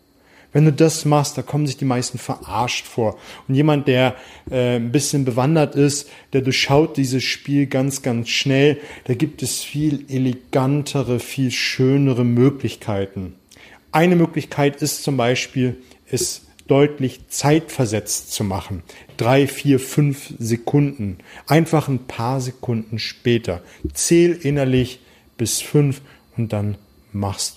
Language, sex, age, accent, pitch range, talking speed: German, male, 40-59, German, 110-140 Hz, 130 wpm